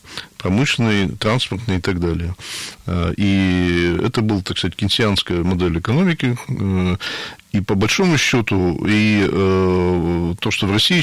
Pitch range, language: 90-110 Hz, Russian